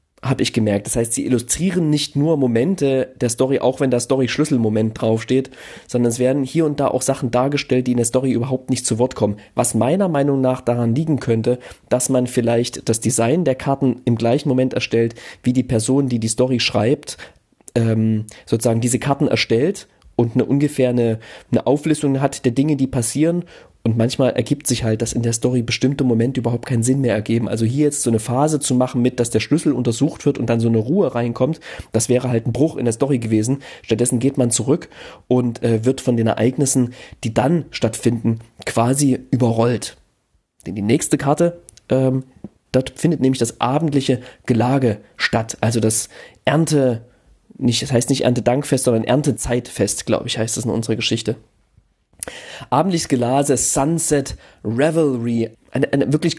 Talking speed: 185 wpm